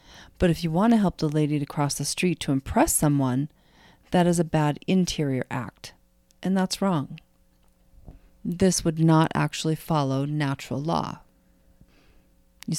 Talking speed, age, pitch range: 150 wpm, 40-59, 140-170 Hz